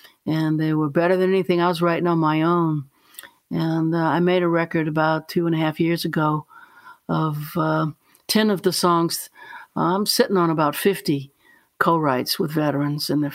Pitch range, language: 155-185 Hz, English